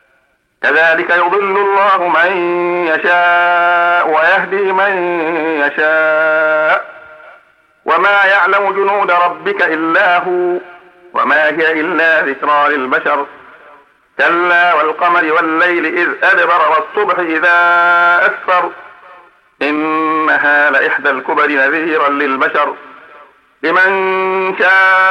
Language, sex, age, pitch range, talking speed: Arabic, male, 50-69, 155-180 Hz, 80 wpm